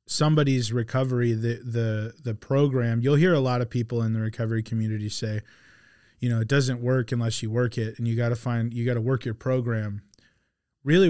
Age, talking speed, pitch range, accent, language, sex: 30-49, 205 wpm, 115-130 Hz, American, English, male